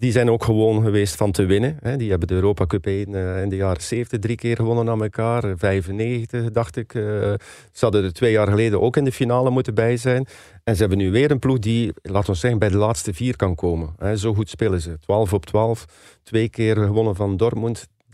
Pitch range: 95-115 Hz